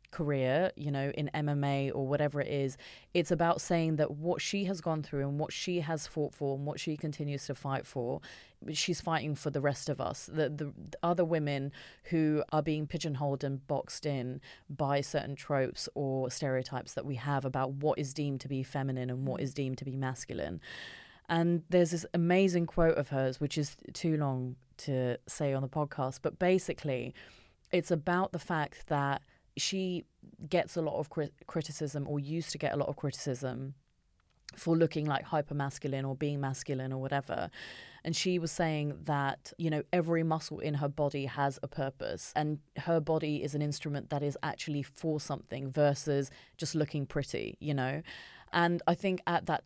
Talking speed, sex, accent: 185 wpm, female, British